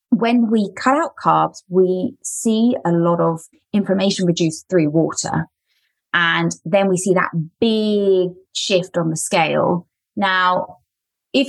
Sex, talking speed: female, 135 wpm